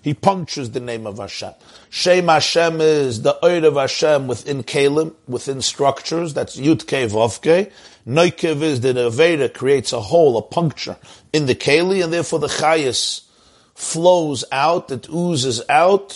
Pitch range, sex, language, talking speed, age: 130-165 Hz, male, English, 150 wpm, 50-69